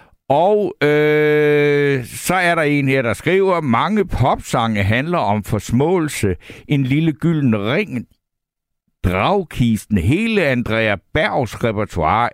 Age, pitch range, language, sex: 60-79, 110-145 Hz, Danish, male